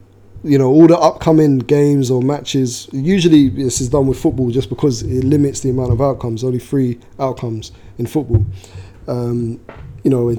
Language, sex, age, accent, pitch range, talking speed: English, male, 20-39, British, 110-135 Hz, 185 wpm